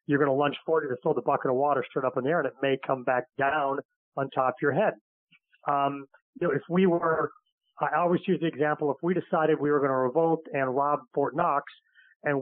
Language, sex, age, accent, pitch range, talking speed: English, male, 40-59, American, 140-170 Hz, 240 wpm